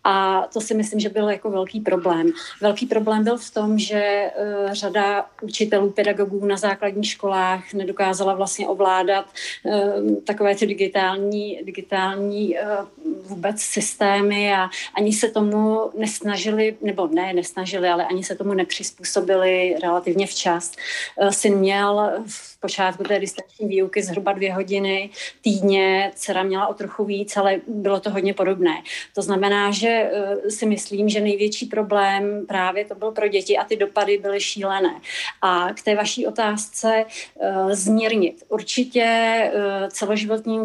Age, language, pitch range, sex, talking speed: 30-49, Czech, 195-210 Hz, female, 135 wpm